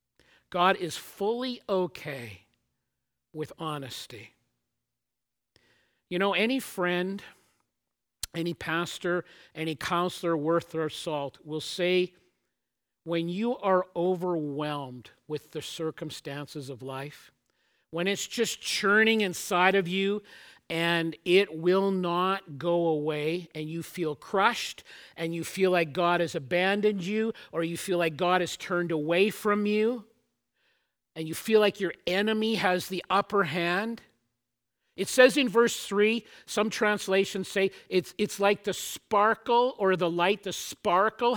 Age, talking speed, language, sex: 50-69, 130 wpm, English, male